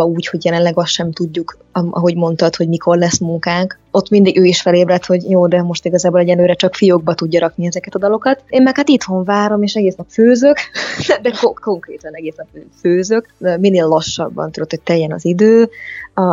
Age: 20-39